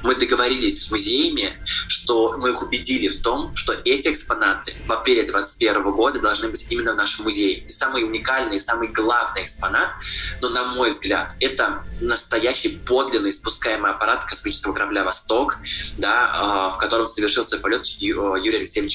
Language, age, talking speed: Russian, 20-39, 150 wpm